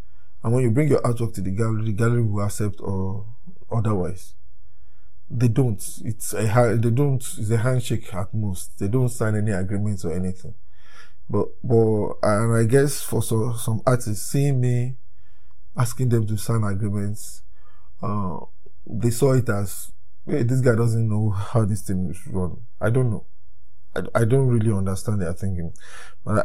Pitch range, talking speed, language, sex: 90-120 Hz, 170 wpm, English, male